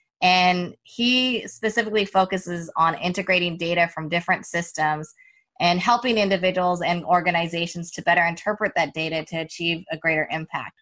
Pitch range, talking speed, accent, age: 165-195 Hz, 140 wpm, American, 20-39